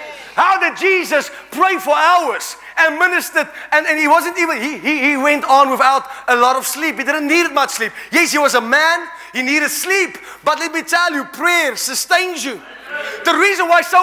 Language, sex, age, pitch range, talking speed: English, male, 30-49, 285-380 Hz, 205 wpm